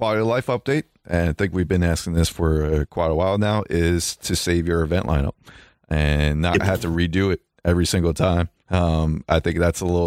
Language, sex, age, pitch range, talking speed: English, male, 30-49, 85-115 Hz, 220 wpm